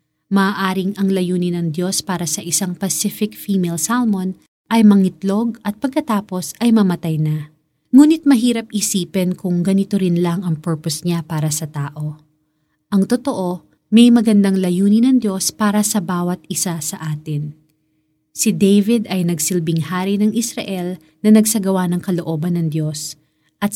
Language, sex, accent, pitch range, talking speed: Filipino, female, native, 165-215 Hz, 145 wpm